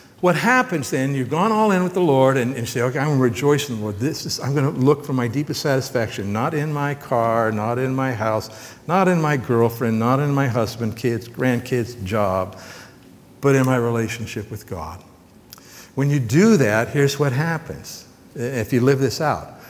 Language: English